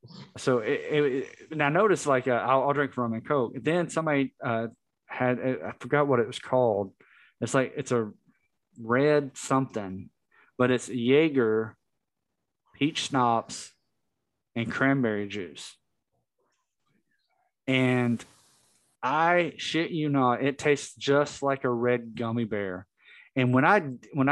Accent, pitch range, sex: American, 120-145 Hz, male